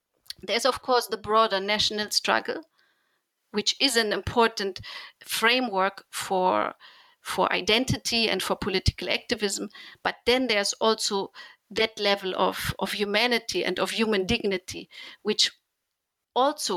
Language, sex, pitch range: English, female, 190-225 Hz